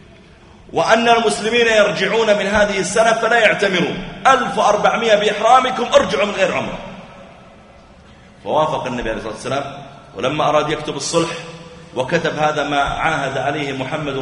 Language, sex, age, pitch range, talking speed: Arabic, male, 30-49, 150-220 Hz, 125 wpm